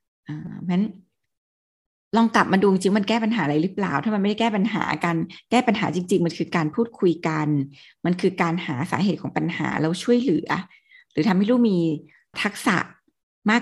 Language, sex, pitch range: Thai, female, 170-225 Hz